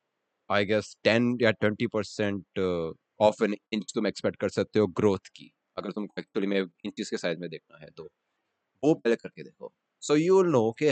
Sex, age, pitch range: male, 30-49, 105-140 Hz